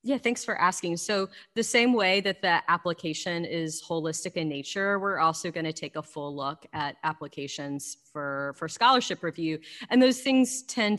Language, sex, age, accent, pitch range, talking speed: English, female, 30-49, American, 155-195 Hz, 180 wpm